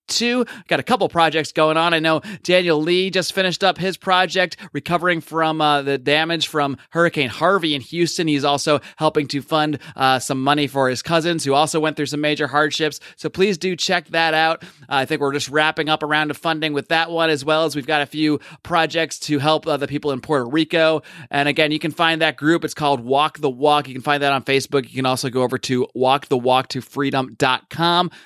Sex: male